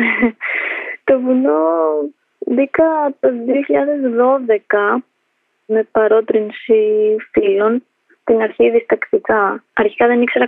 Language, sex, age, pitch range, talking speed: Greek, female, 20-39, 195-295 Hz, 80 wpm